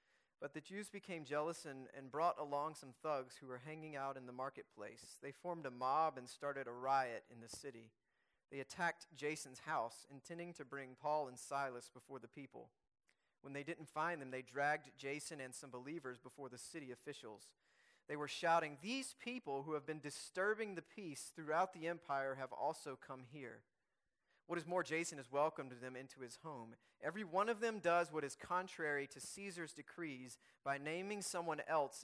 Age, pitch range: 30-49, 125-160 Hz